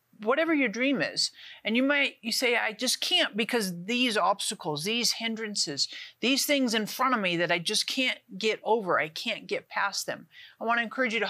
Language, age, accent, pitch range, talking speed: English, 50-69, American, 205-275 Hz, 215 wpm